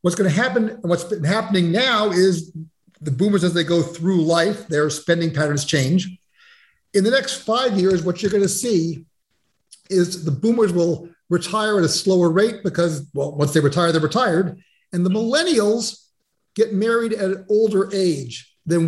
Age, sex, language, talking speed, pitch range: 50-69, male, English, 175 wpm, 170-220 Hz